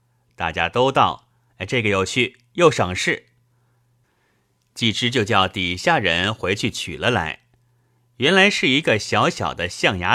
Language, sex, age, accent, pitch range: Chinese, male, 30-49, native, 100-125 Hz